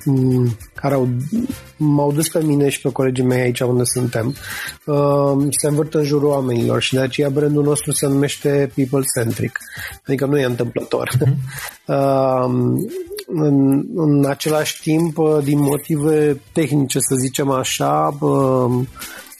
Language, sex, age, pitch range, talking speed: Romanian, male, 30-49, 125-145 Hz, 135 wpm